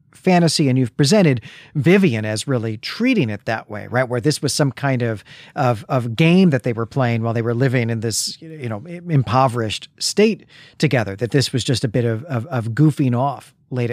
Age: 40-59